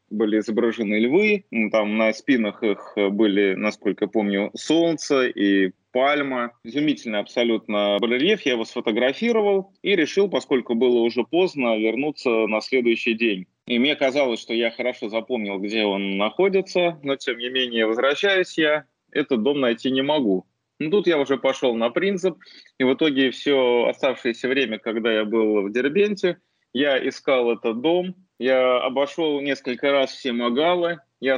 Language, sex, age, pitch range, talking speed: Russian, male, 20-39, 115-145 Hz, 150 wpm